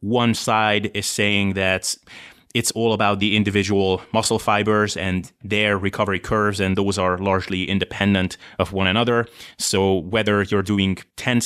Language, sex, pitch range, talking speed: English, male, 95-110 Hz, 150 wpm